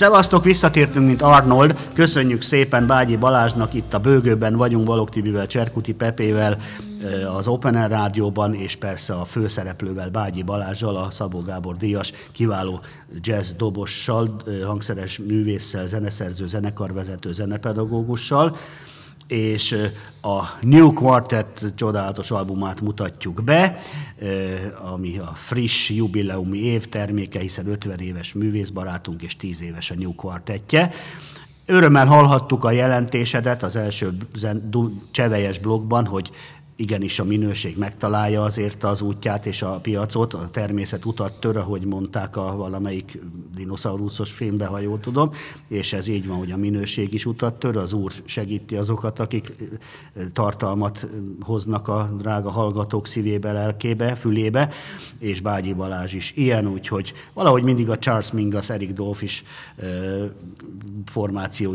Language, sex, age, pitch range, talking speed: Hungarian, male, 50-69, 100-115 Hz, 125 wpm